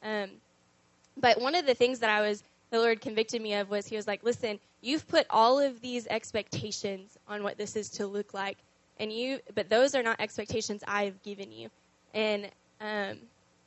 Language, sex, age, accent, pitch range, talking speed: English, female, 10-29, American, 205-235 Hz, 195 wpm